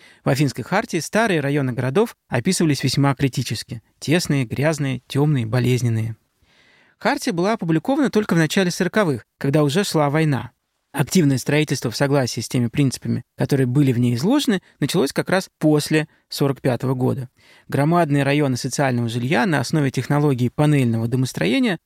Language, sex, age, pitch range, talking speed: Russian, male, 20-39, 130-170 Hz, 140 wpm